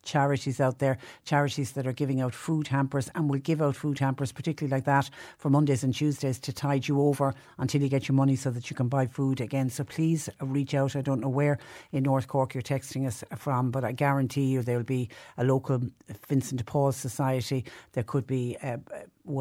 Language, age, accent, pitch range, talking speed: English, 60-79, Irish, 130-150 Hz, 220 wpm